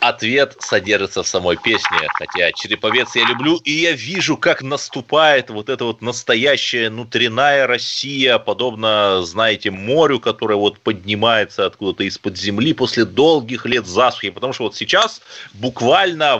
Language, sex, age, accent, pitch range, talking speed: Russian, male, 30-49, native, 110-175 Hz, 140 wpm